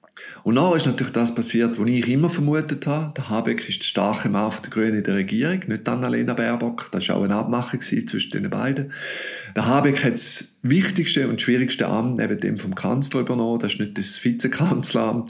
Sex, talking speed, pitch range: male, 210 wpm, 110-135 Hz